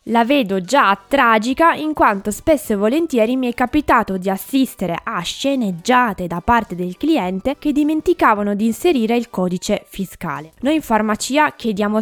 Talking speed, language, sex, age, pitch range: 155 wpm, Italian, female, 20-39, 195-245 Hz